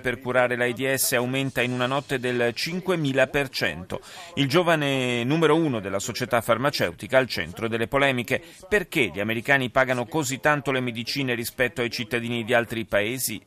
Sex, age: male, 40-59